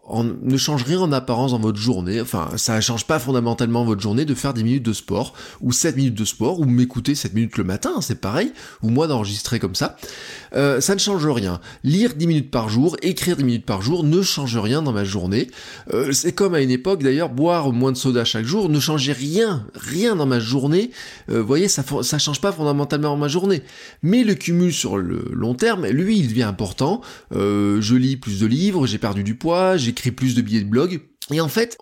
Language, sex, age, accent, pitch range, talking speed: French, male, 20-39, French, 115-160 Hz, 230 wpm